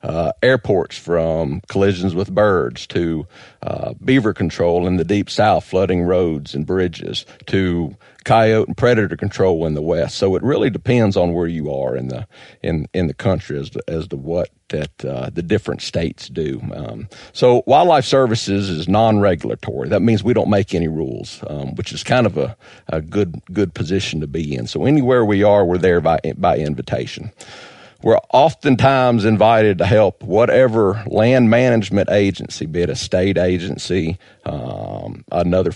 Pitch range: 85-110 Hz